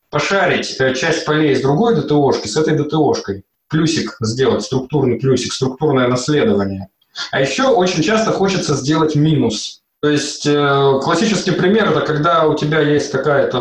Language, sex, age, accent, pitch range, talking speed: Russian, male, 20-39, native, 130-160 Hz, 145 wpm